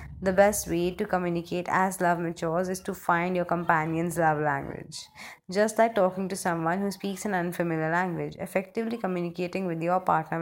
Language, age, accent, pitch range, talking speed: English, 20-39, Indian, 165-195 Hz, 175 wpm